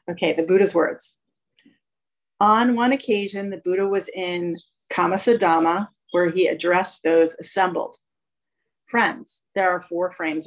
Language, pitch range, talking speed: English, 170-200 Hz, 125 wpm